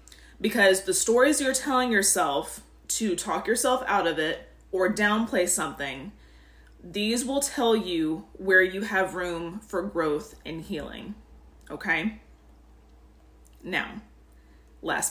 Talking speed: 120 wpm